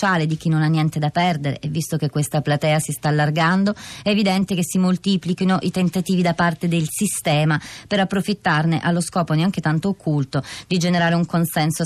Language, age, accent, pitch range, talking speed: Italian, 30-49, native, 150-185 Hz, 185 wpm